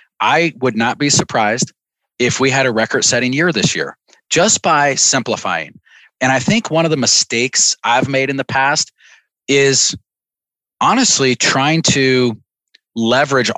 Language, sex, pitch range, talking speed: English, male, 120-150 Hz, 145 wpm